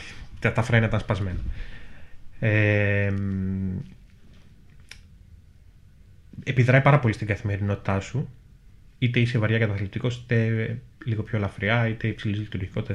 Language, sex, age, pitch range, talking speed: Greek, male, 20-39, 95-120 Hz, 100 wpm